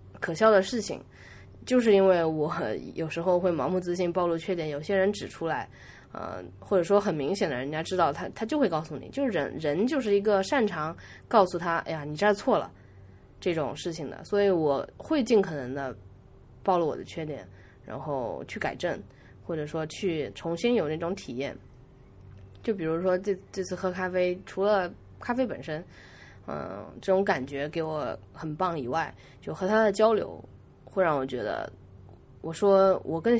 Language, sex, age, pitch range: Chinese, female, 20-39, 145-200 Hz